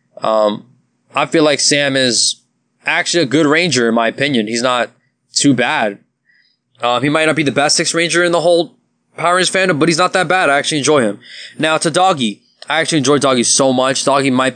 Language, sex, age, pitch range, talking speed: English, male, 20-39, 125-155 Hz, 215 wpm